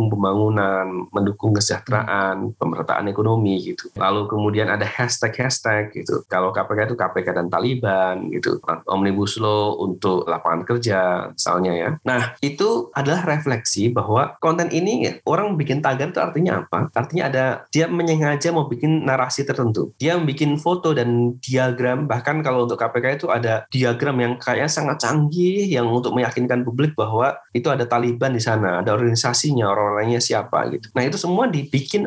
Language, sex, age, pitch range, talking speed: Indonesian, male, 20-39, 110-145 Hz, 155 wpm